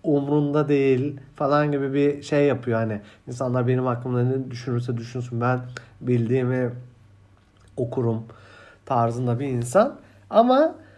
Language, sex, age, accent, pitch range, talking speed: Turkish, male, 50-69, native, 125-185 Hz, 115 wpm